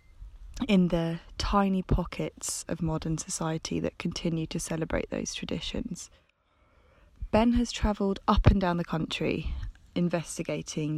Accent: British